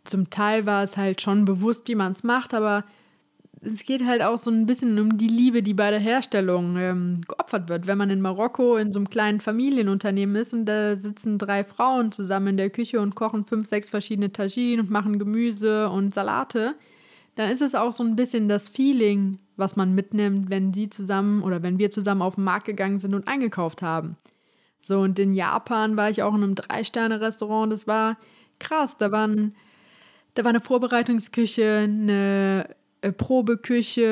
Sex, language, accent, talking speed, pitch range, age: female, German, German, 190 wpm, 200-245 Hz, 20-39